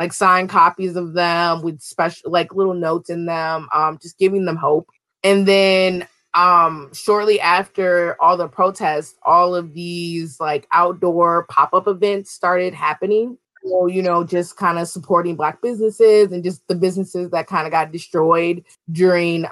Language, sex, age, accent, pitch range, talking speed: English, female, 20-39, American, 165-190 Hz, 165 wpm